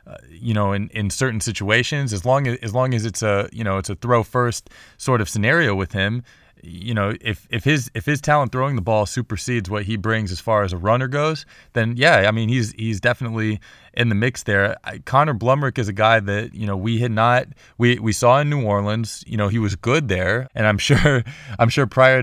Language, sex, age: English, male, 20-39